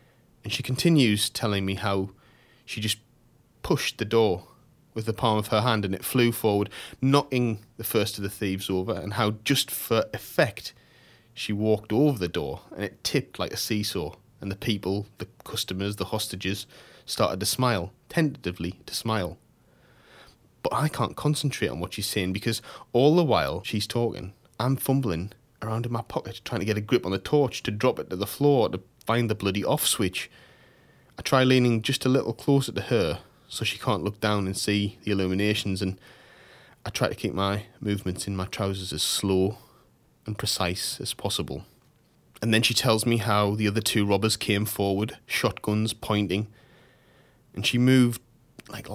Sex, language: male, English